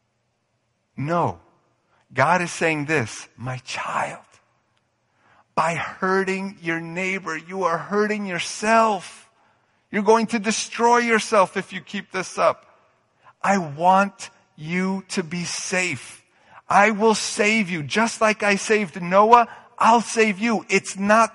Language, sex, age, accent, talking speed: English, male, 50-69, American, 125 wpm